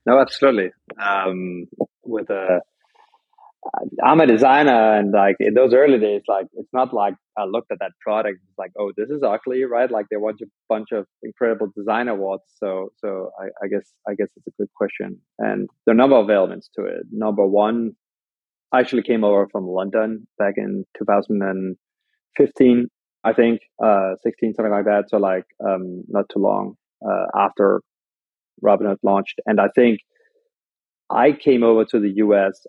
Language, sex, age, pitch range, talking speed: English, male, 20-39, 100-120 Hz, 175 wpm